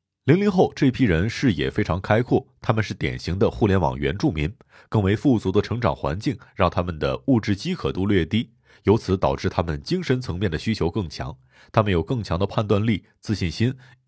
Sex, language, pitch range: male, Chinese, 85-115 Hz